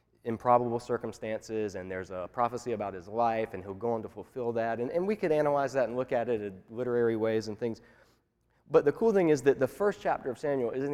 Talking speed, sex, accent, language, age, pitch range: 235 wpm, male, American, English, 20-39, 110-140 Hz